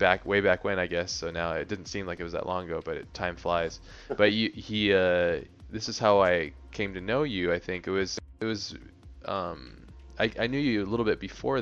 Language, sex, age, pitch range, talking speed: English, male, 20-39, 85-100 Hz, 245 wpm